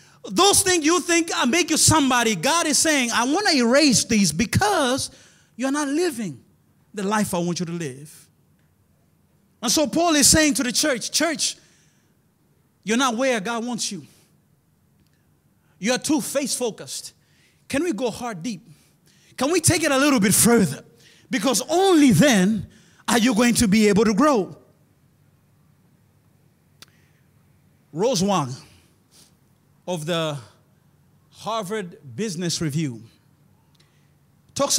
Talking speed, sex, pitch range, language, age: 135 wpm, male, 155-260 Hz, English, 30-49